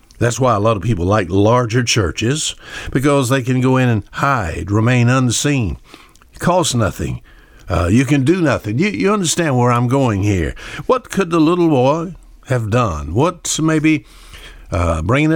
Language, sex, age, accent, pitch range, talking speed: English, male, 60-79, American, 105-140 Hz, 170 wpm